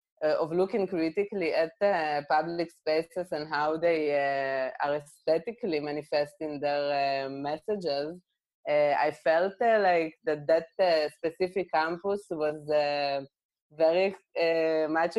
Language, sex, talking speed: English, female, 135 wpm